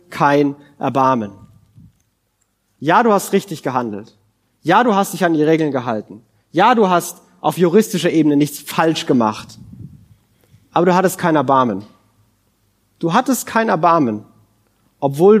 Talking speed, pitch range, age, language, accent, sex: 130 wpm, 115-180 Hz, 30-49, German, German, male